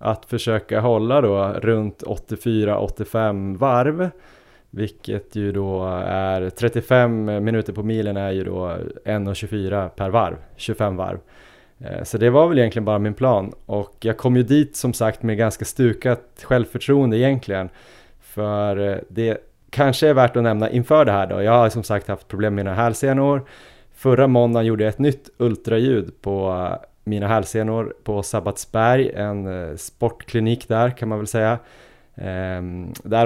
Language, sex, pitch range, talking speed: Swedish, male, 100-125 Hz, 150 wpm